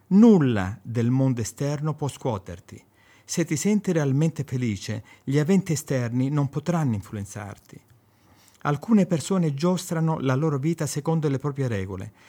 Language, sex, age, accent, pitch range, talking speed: Italian, male, 50-69, native, 110-155 Hz, 130 wpm